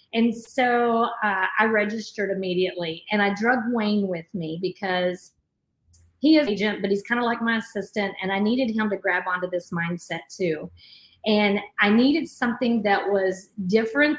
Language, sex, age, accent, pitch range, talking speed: English, female, 30-49, American, 190-230 Hz, 175 wpm